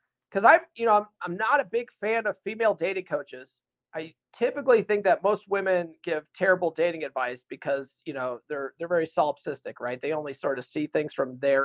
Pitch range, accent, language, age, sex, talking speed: 170-230 Hz, American, English, 40-59, male, 205 wpm